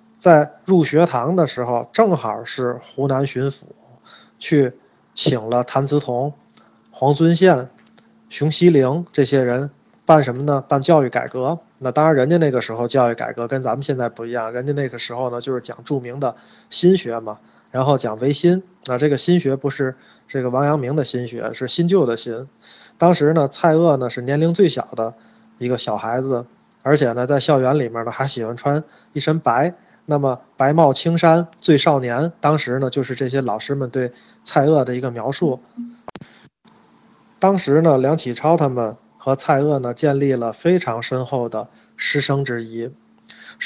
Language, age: Chinese, 20-39